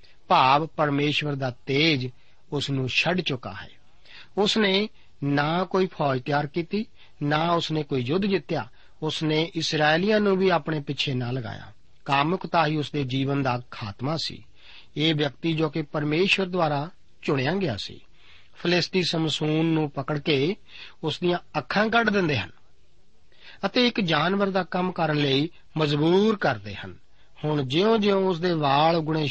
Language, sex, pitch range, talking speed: Punjabi, male, 135-180 Hz, 130 wpm